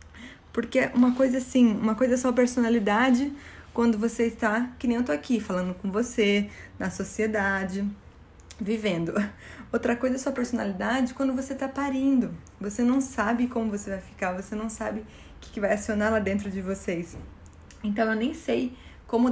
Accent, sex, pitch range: Brazilian, female, 195-240 Hz